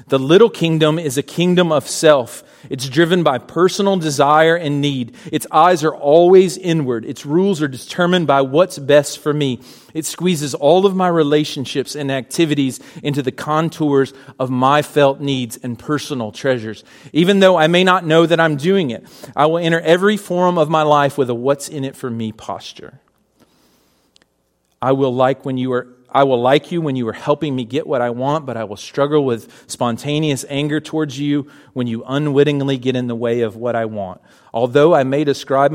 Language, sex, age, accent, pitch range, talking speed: English, male, 40-59, American, 120-155 Hz, 195 wpm